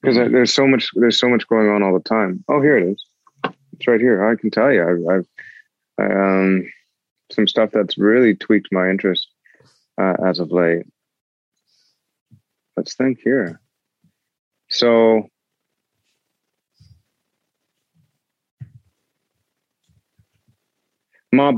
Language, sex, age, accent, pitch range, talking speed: English, male, 30-49, American, 95-115 Hz, 115 wpm